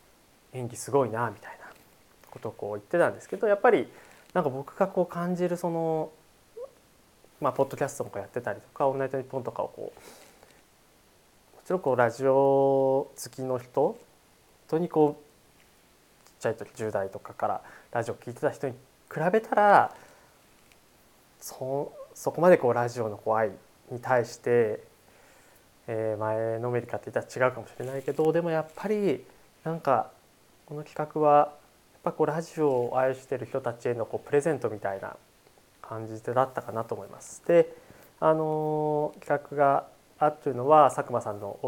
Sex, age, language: male, 20-39, Japanese